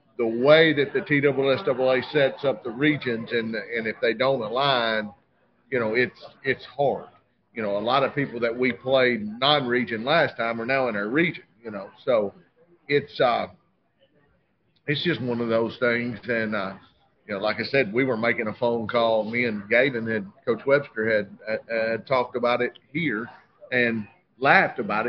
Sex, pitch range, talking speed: male, 110-130 Hz, 200 wpm